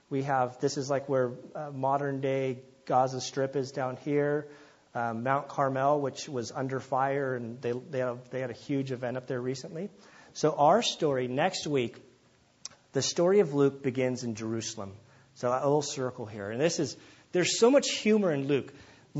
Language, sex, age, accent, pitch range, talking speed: English, male, 40-59, American, 130-170 Hz, 190 wpm